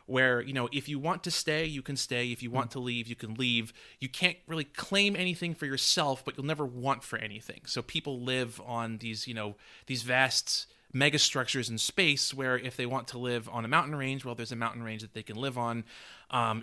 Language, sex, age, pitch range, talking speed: English, male, 30-49, 120-145 Hz, 235 wpm